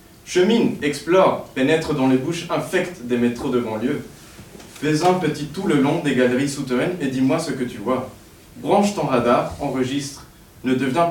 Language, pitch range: French, 125-160 Hz